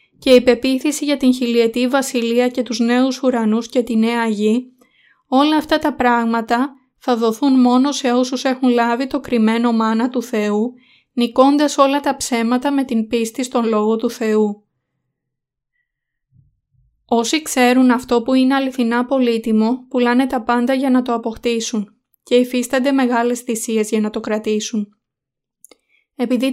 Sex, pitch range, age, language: female, 230-260 Hz, 20-39, Greek